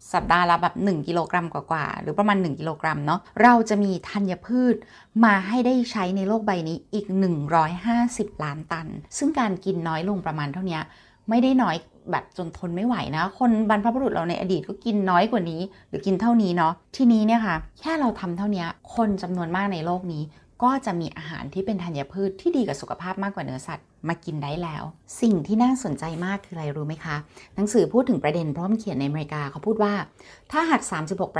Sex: female